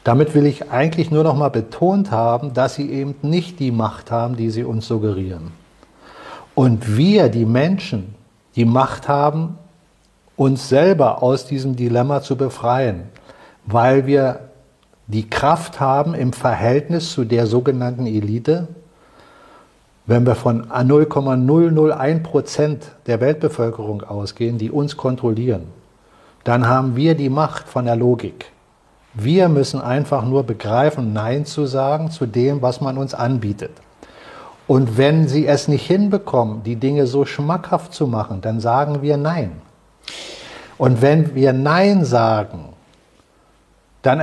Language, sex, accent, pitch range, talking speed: German, male, German, 120-150 Hz, 135 wpm